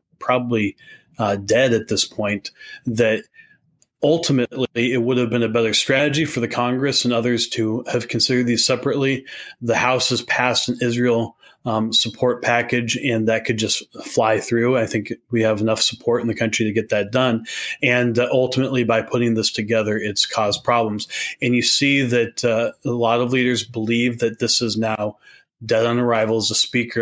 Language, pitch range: English, 110-125 Hz